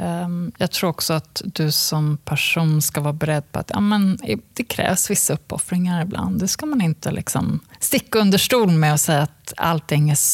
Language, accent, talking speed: Swedish, native, 190 wpm